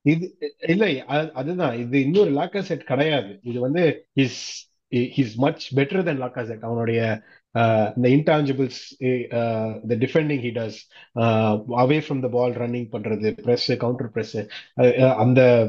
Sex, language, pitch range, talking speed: male, Tamil, 120-150 Hz, 85 wpm